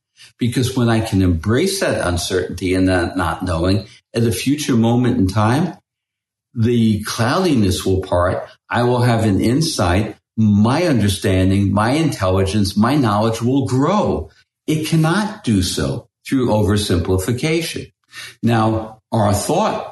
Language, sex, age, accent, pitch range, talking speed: English, male, 60-79, American, 95-130 Hz, 130 wpm